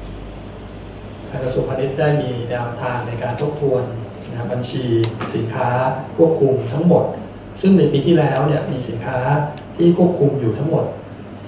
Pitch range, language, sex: 105-140 Hz, Thai, male